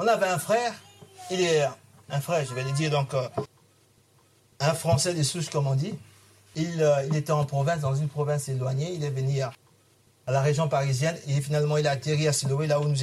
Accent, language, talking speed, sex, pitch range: French, French, 225 wpm, male, 140-225 Hz